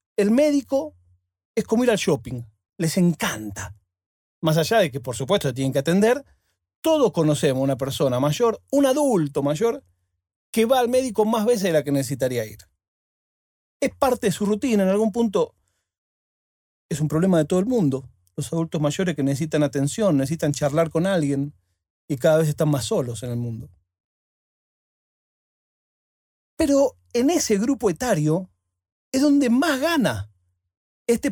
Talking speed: 155 wpm